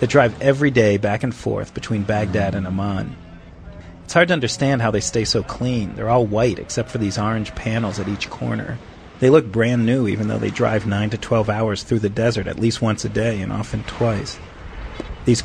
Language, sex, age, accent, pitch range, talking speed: English, male, 40-59, American, 100-120 Hz, 215 wpm